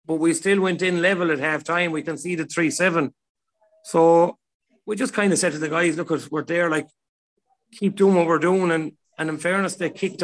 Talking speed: 205 wpm